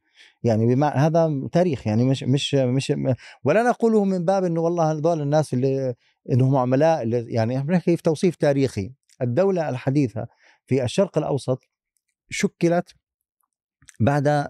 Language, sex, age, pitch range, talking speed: Arabic, male, 30-49, 120-155 Hz, 135 wpm